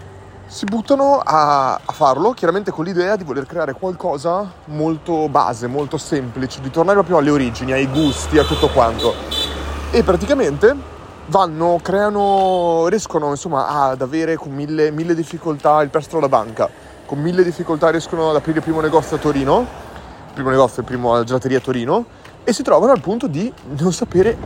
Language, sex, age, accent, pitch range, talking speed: Italian, male, 30-49, native, 130-170 Hz, 170 wpm